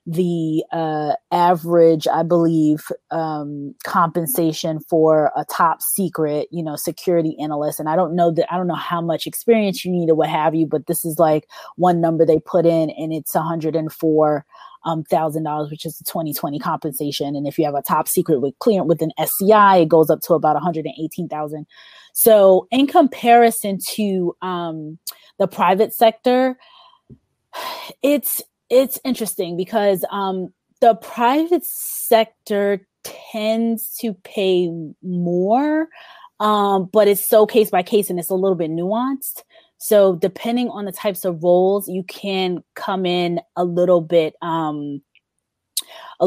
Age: 20-39